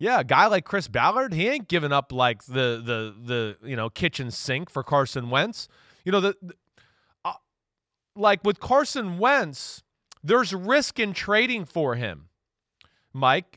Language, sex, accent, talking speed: English, male, American, 165 wpm